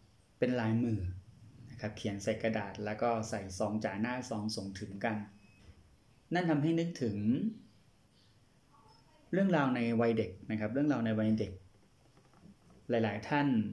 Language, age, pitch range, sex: Thai, 20-39, 105-125 Hz, male